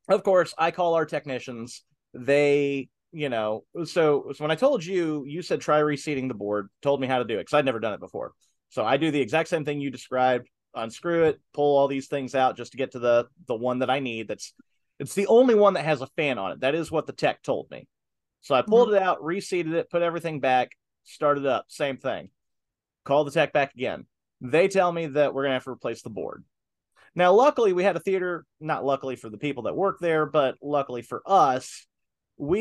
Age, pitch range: 30-49, 130-170 Hz